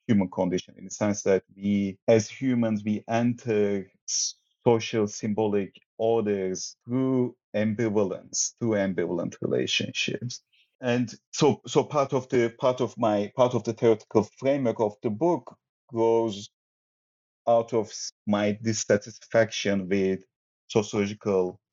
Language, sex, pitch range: English, male, 95-125 Hz